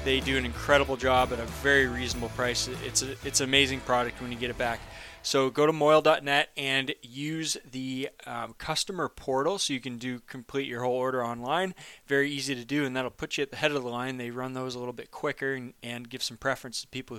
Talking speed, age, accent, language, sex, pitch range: 235 wpm, 20-39, American, English, male, 125-145 Hz